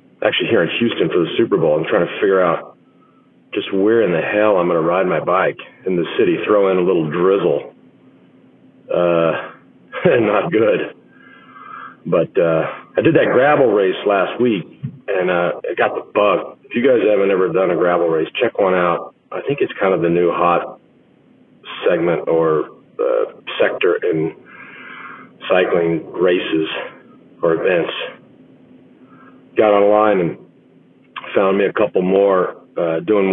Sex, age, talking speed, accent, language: male, 40-59, 160 wpm, American, English